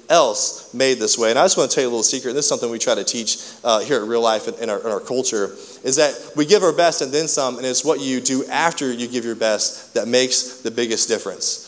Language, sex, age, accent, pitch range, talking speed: English, male, 20-39, American, 150-190 Hz, 300 wpm